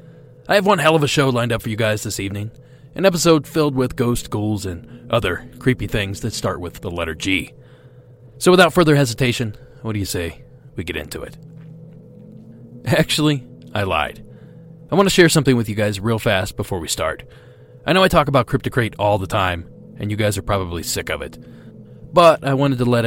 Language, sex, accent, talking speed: English, male, American, 210 wpm